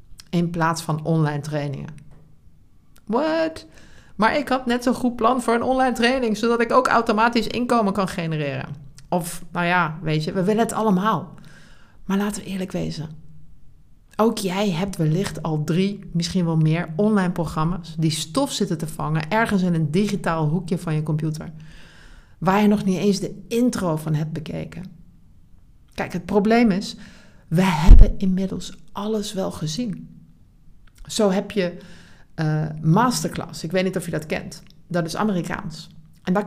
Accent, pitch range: Dutch, 160-215 Hz